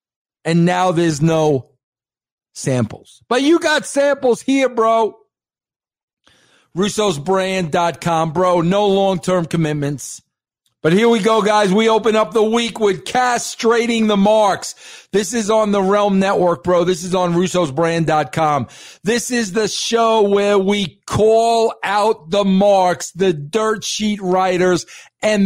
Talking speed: 130 wpm